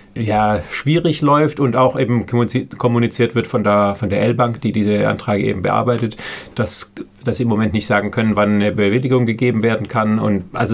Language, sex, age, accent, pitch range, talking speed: German, male, 30-49, German, 110-130 Hz, 190 wpm